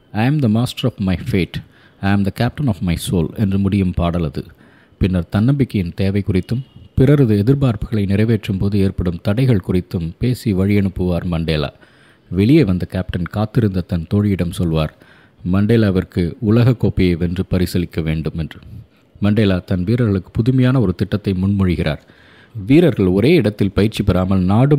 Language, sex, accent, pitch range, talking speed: Tamil, male, native, 90-115 Hz, 145 wpm